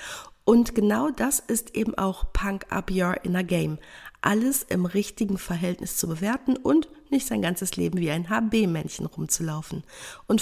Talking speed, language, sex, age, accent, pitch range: 130 wpm, German, female, 50-69, German, 175-220 Hz